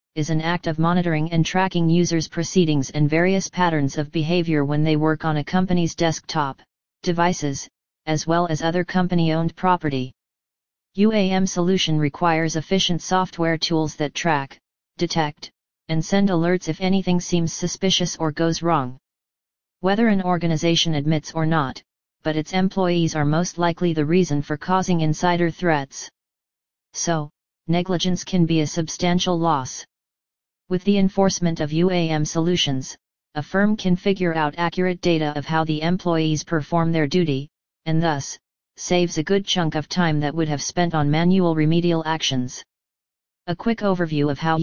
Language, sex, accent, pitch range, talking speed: English, female, American, 155-175 Hz, 150 wpm